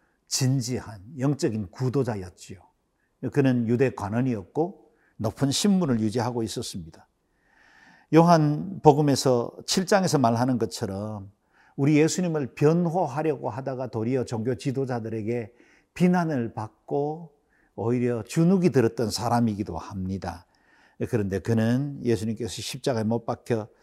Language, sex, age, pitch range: Korean, male, 50-69, 110-150 Hz